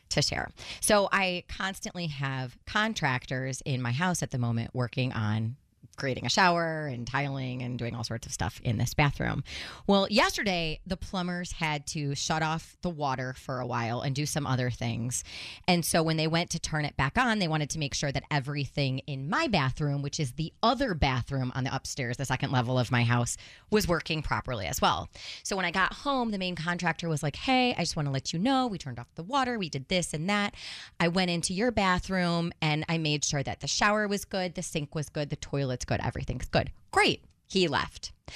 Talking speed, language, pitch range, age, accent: 220 wpm, English, 130-185 Hz, 30-49, American